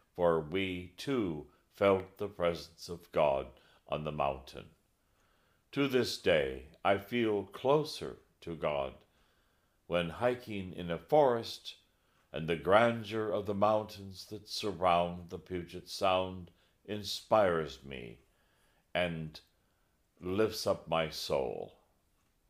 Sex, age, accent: male, 60-79, American